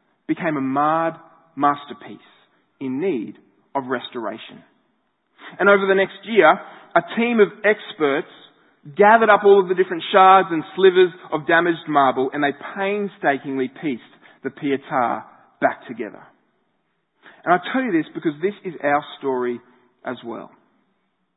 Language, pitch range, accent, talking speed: English, 155-205 Hz, Australian, 140 wpm